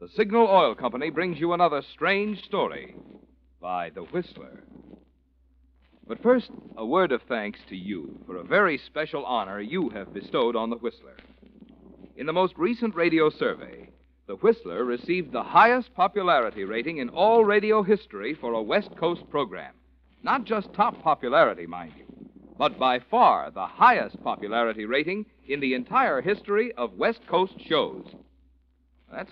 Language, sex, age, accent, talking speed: English, male, 60-79, American, 155 wpm